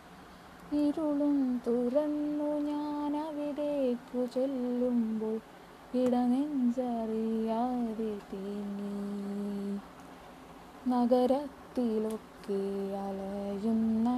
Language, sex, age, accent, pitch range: Malayalam, female, 20-39, native, 220-320 Hz